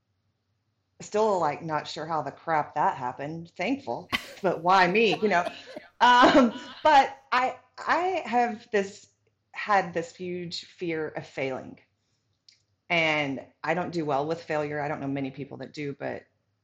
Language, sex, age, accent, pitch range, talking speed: English, female, 30-49, American, 125-170 Hz, 150 wpm